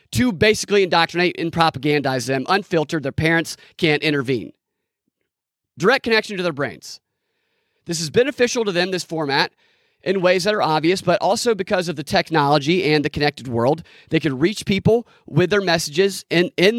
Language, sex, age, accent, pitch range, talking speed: English, male, 30-49, American, 150-205 Hz, 170 wpm